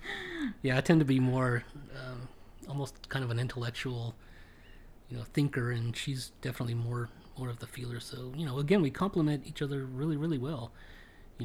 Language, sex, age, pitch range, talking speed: English, male, 30-49, 120-150 Hz, 185 wpm